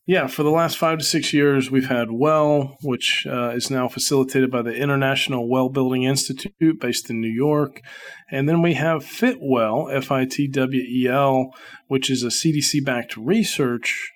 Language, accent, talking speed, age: English, American, 155 wpm, 40-59